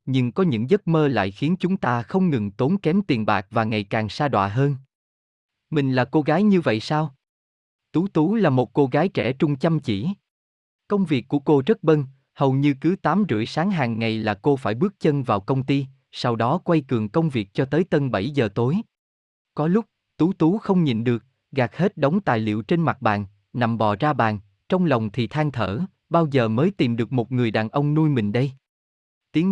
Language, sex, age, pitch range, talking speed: Vietnamese, male, 20-39, 115-160 Hz, 220 wpm